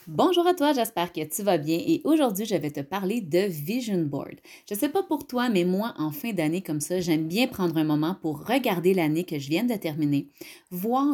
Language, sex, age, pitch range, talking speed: French, female, 30-49, 170-260 Hz, 235 wpm